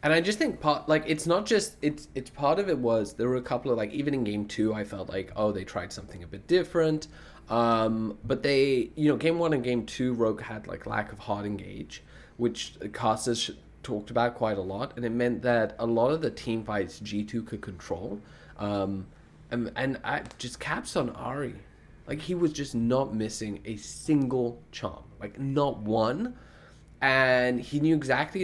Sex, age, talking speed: male, 20-39, 205 wpm